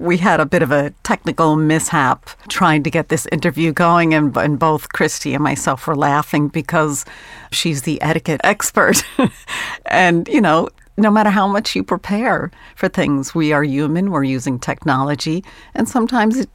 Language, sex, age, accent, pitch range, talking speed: English, female, 50-69, American, 135-170 Hz, 165 wpm